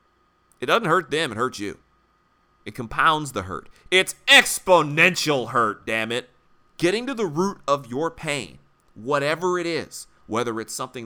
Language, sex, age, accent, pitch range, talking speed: English, male, 30-49, American, 110-150 Hz, 155 wpm